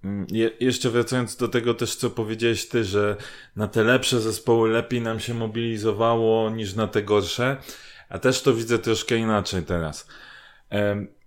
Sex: male